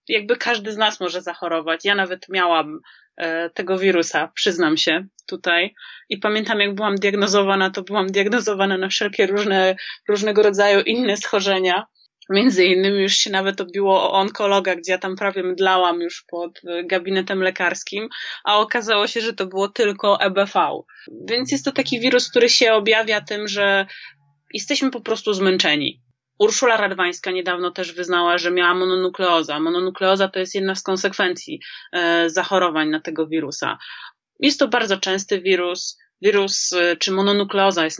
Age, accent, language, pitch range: 20-39, native, Polish, 180-210 Hz